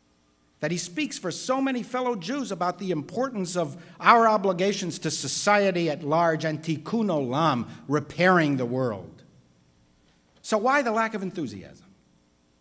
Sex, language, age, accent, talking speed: male, English, 60-79, American, 145 wpm